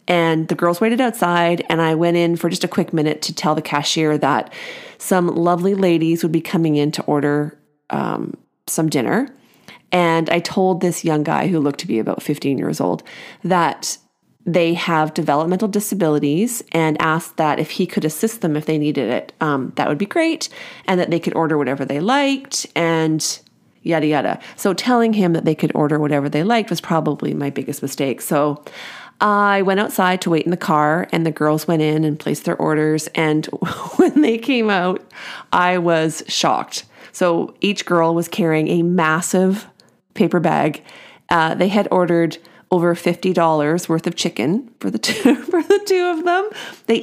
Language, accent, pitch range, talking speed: English, American, 155-195 Hz, 185 wpm